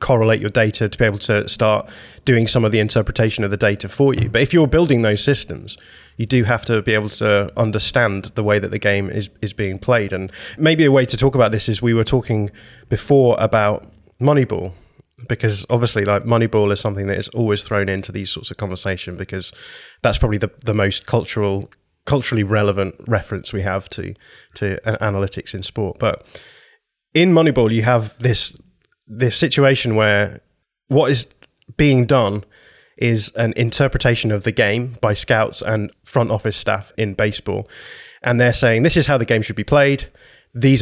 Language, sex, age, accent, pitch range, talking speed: English, male, 20-39, British, 105-125 Hz, 185 wpm